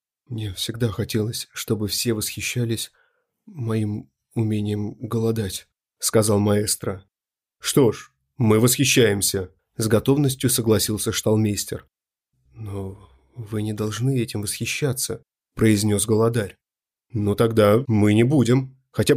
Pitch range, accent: 105-125 Hz, native